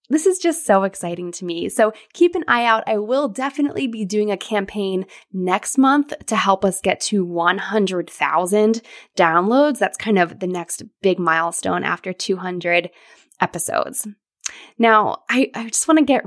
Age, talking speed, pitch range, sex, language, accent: 20-39, 165 wpm, 185-275 Hz, female, English, American